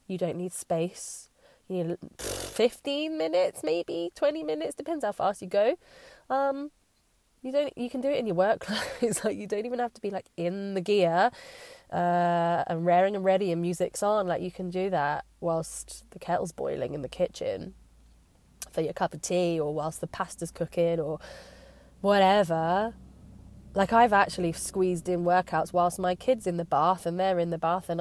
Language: English